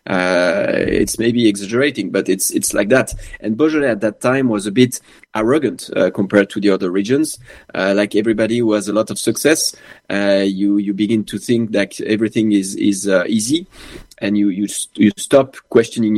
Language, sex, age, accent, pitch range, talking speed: English, male, 30-49, French, 100-115 Hz, 185 wpm